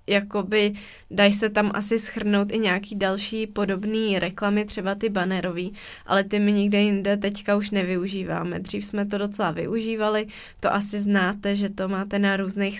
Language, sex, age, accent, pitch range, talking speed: Czech, female, 20-39, native, 190-205 Hz, 165 wpm